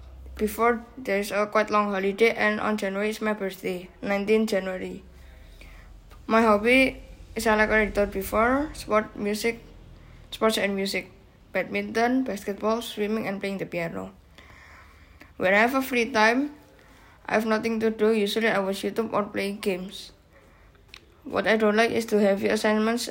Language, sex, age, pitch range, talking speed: Indonesian, female, 10-29, 190-220 Hz, 155 wpm